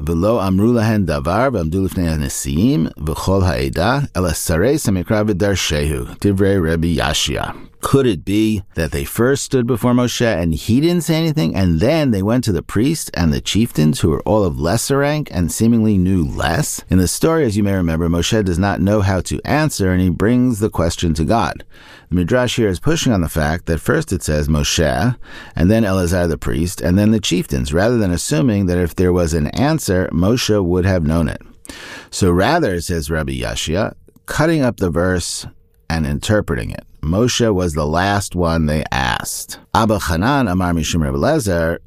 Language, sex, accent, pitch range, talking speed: English, male, American, 80-110 Hz, 165 wpm